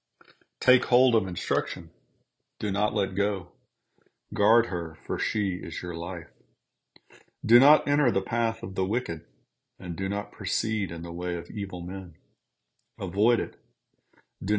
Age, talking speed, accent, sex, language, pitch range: 40-59, 150 wpm, American, male, English, 90-105 Hz